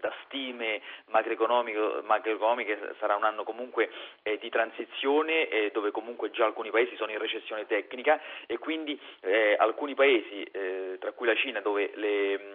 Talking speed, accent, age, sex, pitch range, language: 155 wpm, native, 30-49, male, 105-130 Hz, Italian